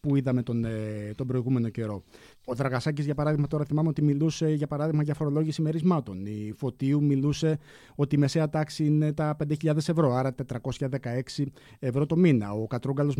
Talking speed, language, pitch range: 170 wpm, Greek, 125-155 Hz